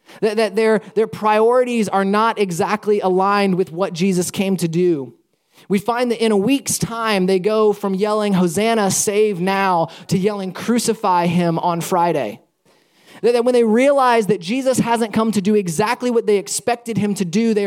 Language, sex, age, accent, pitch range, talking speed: English, male, 20-39, American, 190-230 Hz, 180 wpm